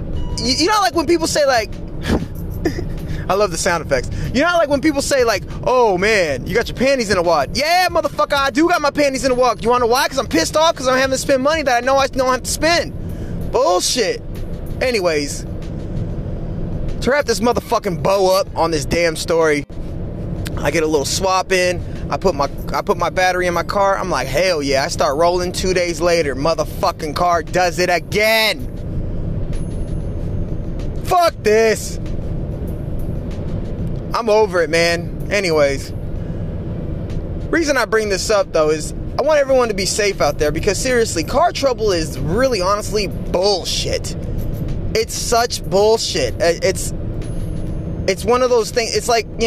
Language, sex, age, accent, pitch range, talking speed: English, male, 20-39, American, 165-260 Hz, 175 wpm